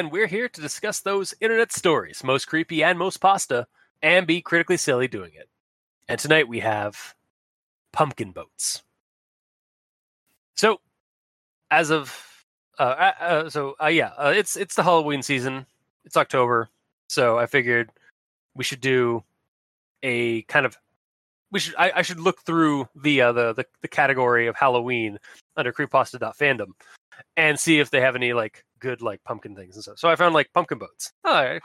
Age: 20-39